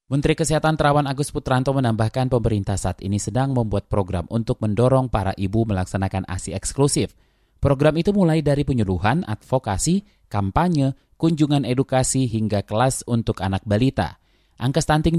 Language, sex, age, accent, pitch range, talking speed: Indonesian, male, 20-39, native, 105-140 Hz, 140 wpm